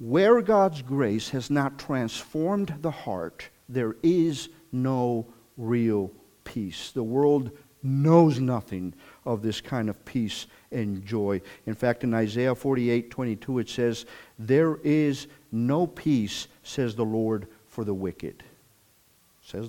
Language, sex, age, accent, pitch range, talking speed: English, male, 50-69, American, 115-150 Hz, 130 wpm